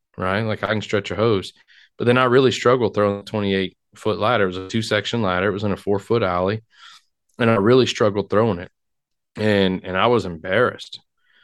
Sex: male